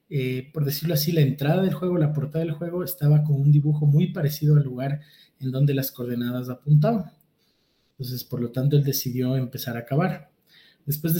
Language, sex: Spanish, male